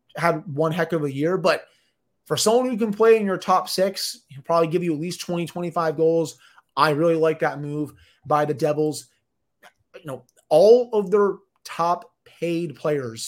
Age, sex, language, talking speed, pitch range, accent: 20-39, male, English, 185 wpm, 150-175 Hz, American